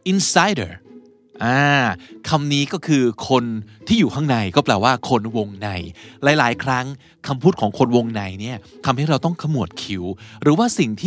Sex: male